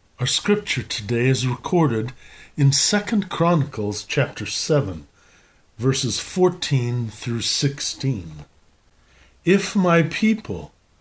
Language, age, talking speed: English, 50-69, 95 wpm